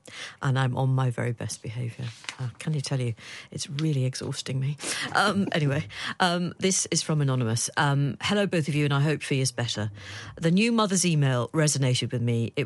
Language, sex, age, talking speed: English, female, 50-69, 200 wpm